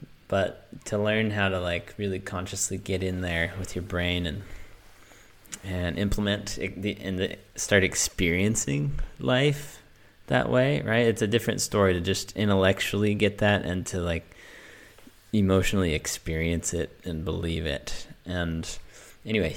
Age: 20-39